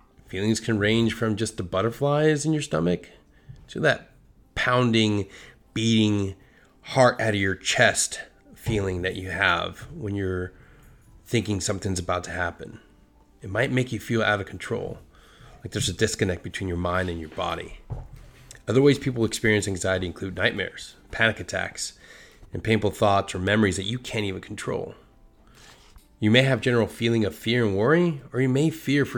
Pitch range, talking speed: 95-120 Hz, 165 wpm